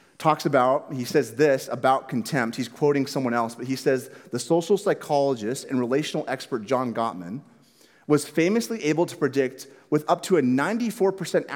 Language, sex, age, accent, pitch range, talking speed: English, male, 30-49, American, 130-175 Hz, 165 wpm